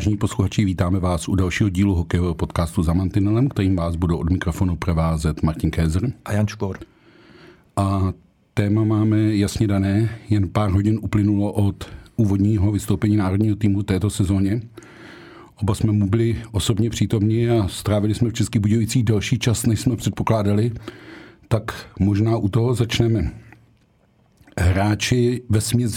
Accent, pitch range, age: native, 100-115 Hz, 50-69